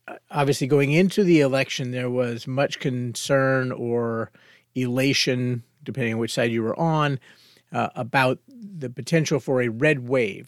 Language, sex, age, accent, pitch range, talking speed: English, male, 40-59, American, 120-145 Hz, 150 wpm